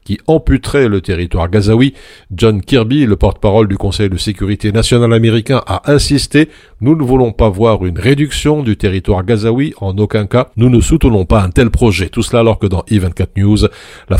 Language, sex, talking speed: French, male, 190 wpm